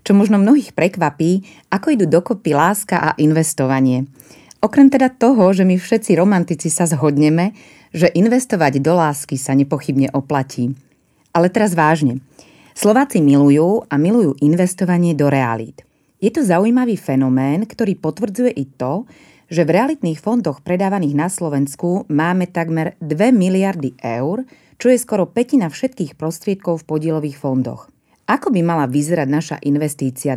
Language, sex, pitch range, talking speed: Slovak, female, 140-205 Hz, 140 wpm